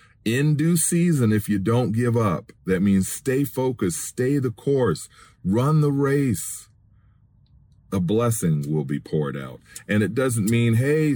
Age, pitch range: 40-59, 95-125 Hz